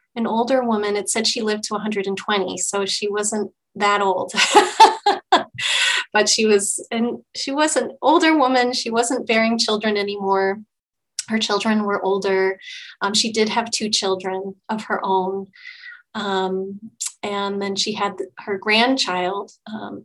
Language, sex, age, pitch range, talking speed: English, female, 30-49, 200-230 Hz, 145 wpm